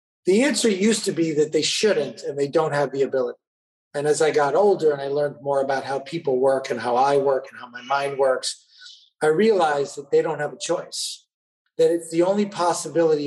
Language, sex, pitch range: English, male, 145-230 Hz